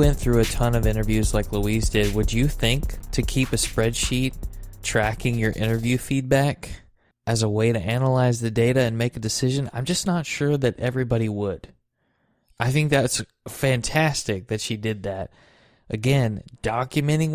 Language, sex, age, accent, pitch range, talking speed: English, male, 20-39, American, 110-140 Hz, 165 wpm